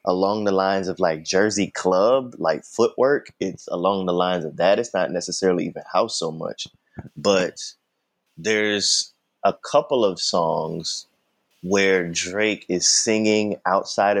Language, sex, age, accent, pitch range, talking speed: English, male, 20-39, American, 85-105 Hz, 140 wpm